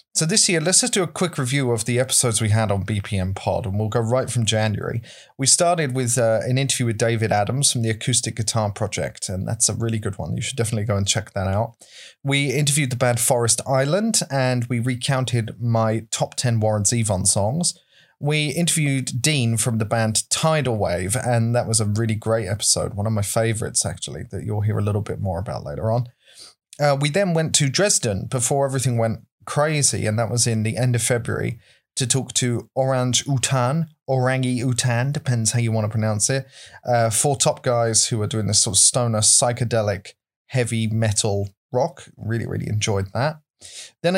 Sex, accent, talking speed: male, British, 200 wpm